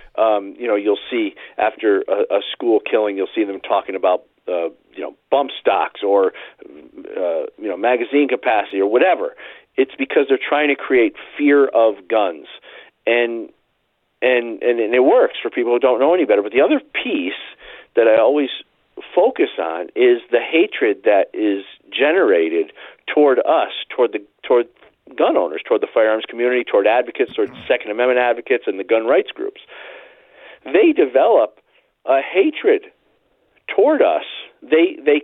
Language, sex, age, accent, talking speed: English, male, 40-59, American, 160 wpm